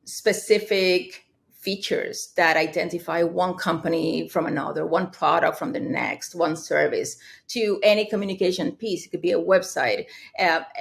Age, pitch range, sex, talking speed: 30-49, 175-255 Hz, female, 140 wpm